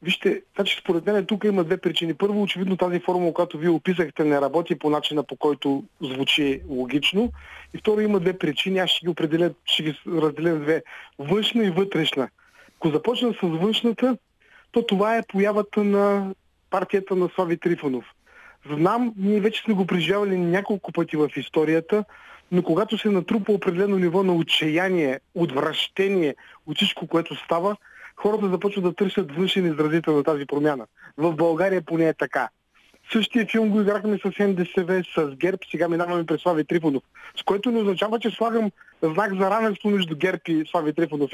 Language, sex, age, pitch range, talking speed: Bulgarian, male, 30-49, 165-210 Hz, 165 wpm